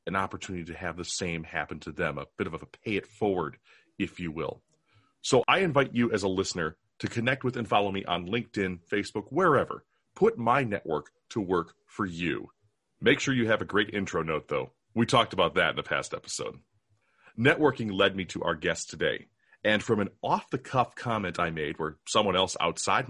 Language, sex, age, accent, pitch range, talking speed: English, male, 40-59, American, 95-120 Hz, 205 wpm